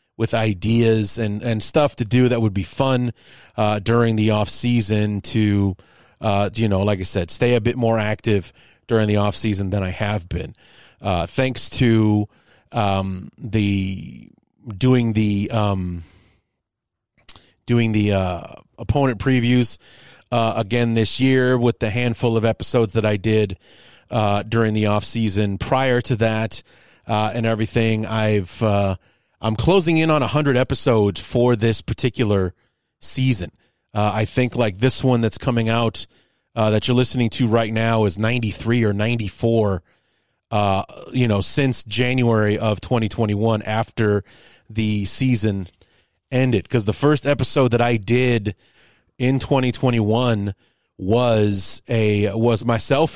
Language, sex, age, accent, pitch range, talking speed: English, male, 30-49, American, 105-120 Hz, 145 wpm